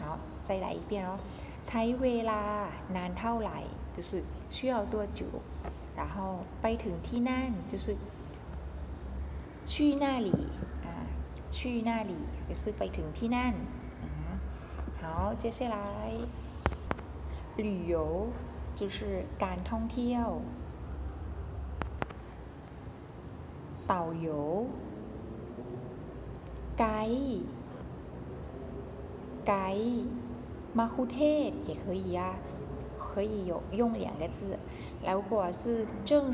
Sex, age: female, 20-39